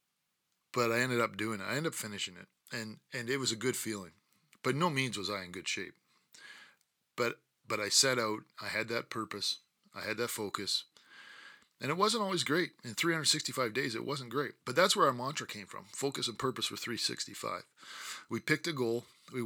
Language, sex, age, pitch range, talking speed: English, male, 40-59, 110-145 Hz, 205 wpm